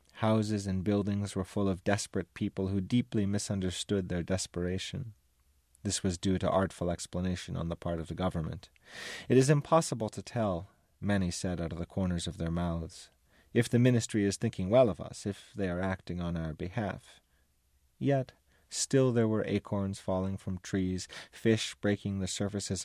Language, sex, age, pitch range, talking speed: English, male, 30-49, 85-105 Hz, 175 wpm